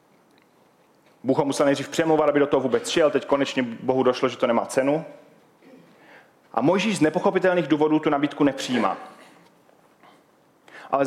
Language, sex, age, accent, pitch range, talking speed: Czech, male, 30-49, native, 125-155 Hz, 140 wpm